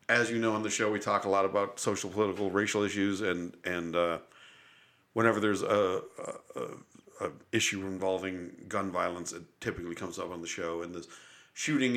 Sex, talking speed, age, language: male, 185 wpm, 50-69, English